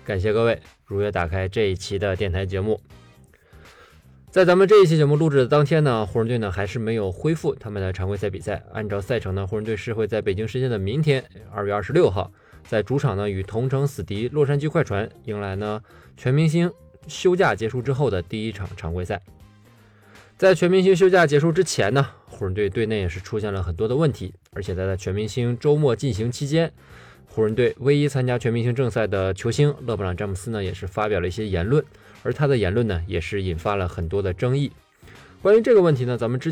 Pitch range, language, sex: 95-130 Hz, Chinese, male